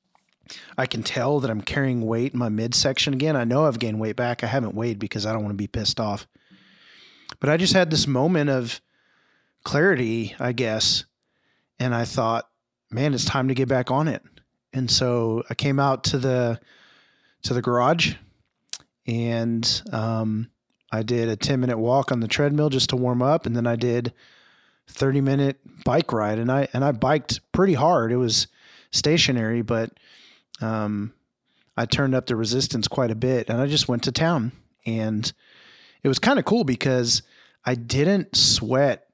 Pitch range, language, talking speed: 115-140 Hz, English, 180 wpm